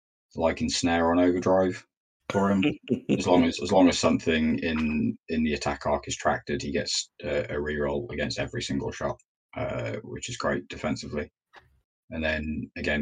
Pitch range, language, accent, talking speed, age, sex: 70-90 Hz, English, British, 170 wpm, 20-39, male